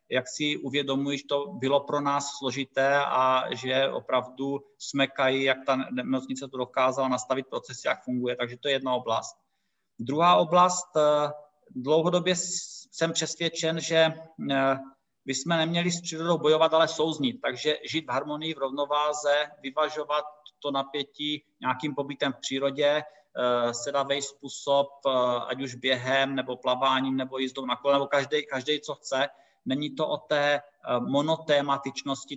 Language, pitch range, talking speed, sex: Czech, 135-155 Hz, 135 wpm, male